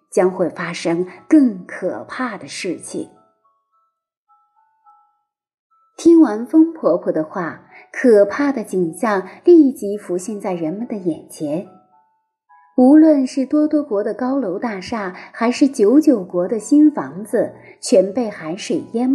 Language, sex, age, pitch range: Chinese, female, 30-49, 190-300 Hz